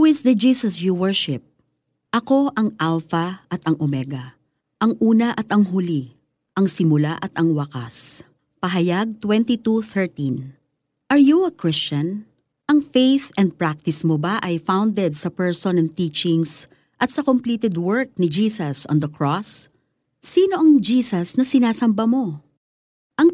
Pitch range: 155-225 Hz